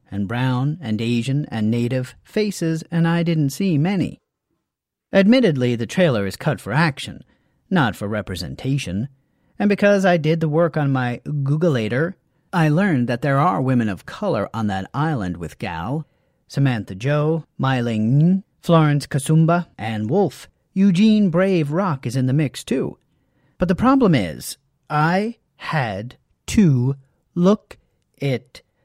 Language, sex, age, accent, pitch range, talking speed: English, male, 40-59, American, 130-180 Hz, 140 wpm